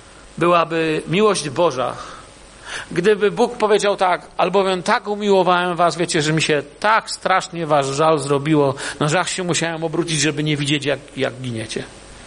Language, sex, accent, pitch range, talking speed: Polish, male, native, 165-220 Hz, 145 wpm